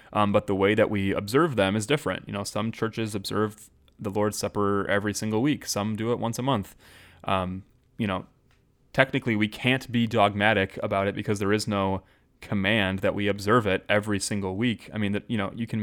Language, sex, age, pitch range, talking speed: English, male, 20-39, 95-110 Hz, 210 wpm